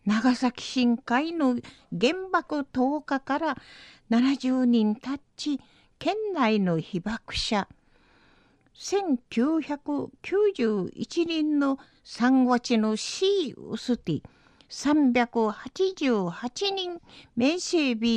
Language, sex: Japanese, female